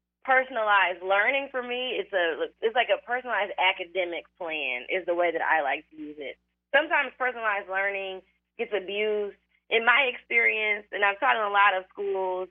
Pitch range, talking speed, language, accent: 175-225 Hz, 175 wpm, English, American